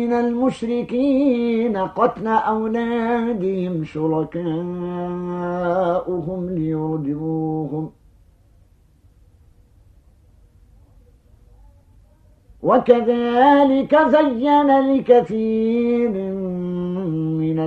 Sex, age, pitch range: male, 50-69, 140-240 Hz